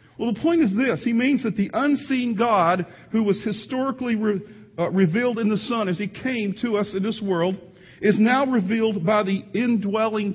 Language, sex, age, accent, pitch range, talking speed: English, male, 50-69, American, 170-235 Hz, 190 wpm